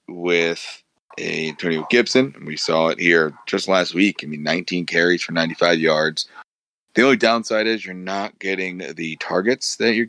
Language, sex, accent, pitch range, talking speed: English, male, American, 85-105 Hz, 180 wpm